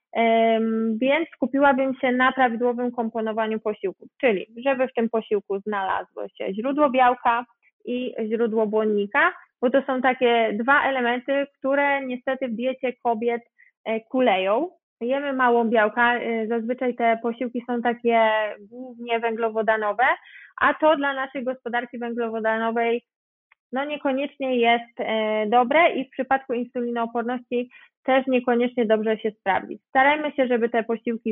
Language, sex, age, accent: Polish, female, 20-39, native